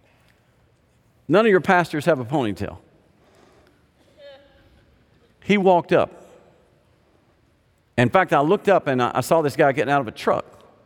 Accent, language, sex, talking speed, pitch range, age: American, English, male, 140 wpm, 110-135 Hz, 50-69